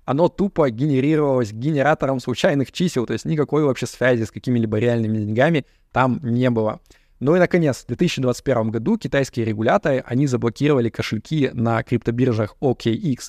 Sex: male